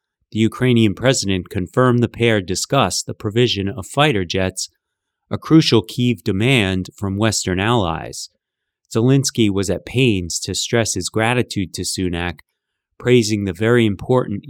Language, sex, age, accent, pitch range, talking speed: English, male, 30-49, American, 95-115 Hz, 135 wpm